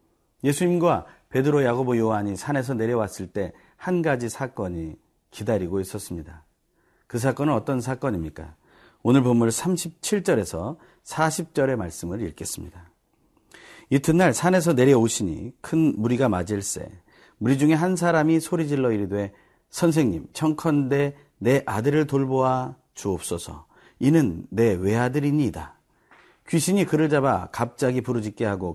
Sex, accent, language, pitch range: male, native, Korean, 100-145 Hz